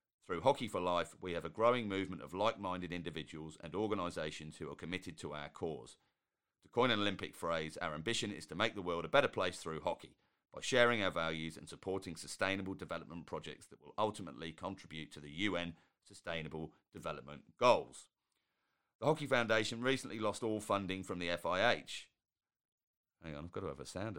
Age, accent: 40-59, British